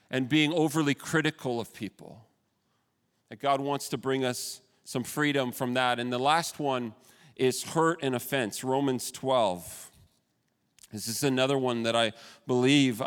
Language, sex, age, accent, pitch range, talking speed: English, male, 40-59, American, 110-135 Hz, 150 wpm